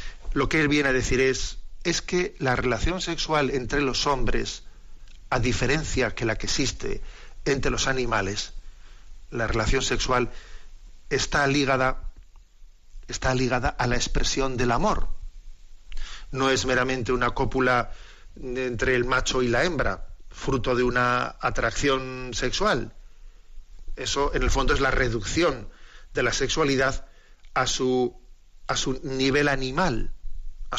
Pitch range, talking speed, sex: 115-140 Hz, 130 wpm, male